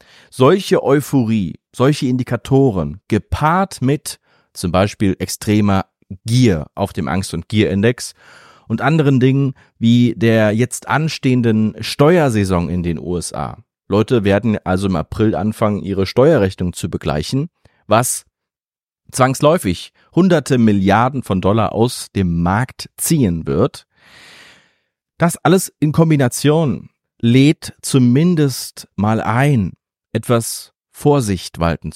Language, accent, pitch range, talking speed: German, German, 90-130 Hz, 110 wpm